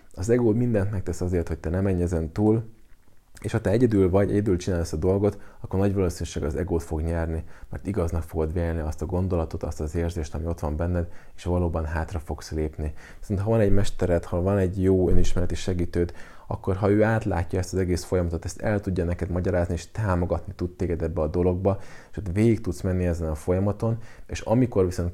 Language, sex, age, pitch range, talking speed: Hungarian, male, 20-39, 85-100 Hz, 215 wpm